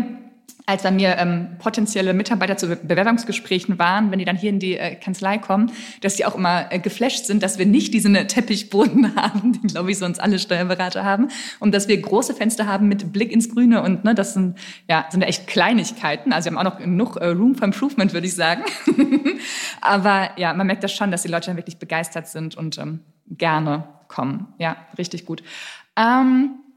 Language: German